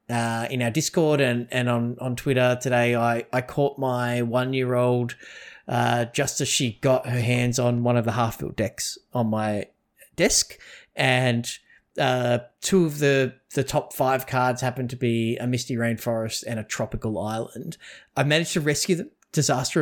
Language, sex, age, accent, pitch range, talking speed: English, male, 30-49, Australian, 115-140 Hz, 175 wpm